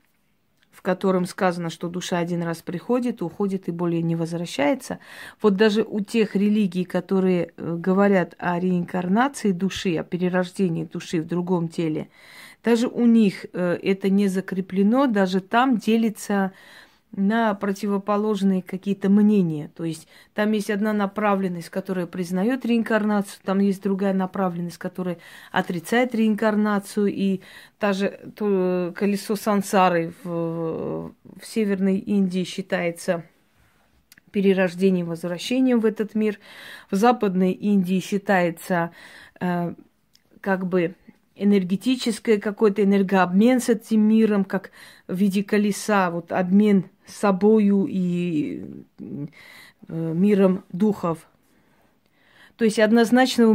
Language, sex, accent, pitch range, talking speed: Russian, female, native, 185-215 Hz, 110 wpm